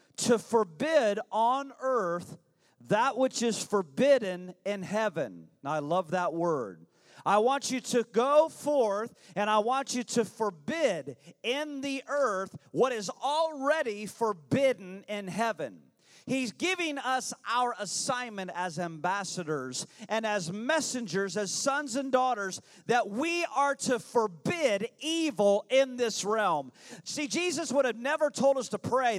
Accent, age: American, 40-59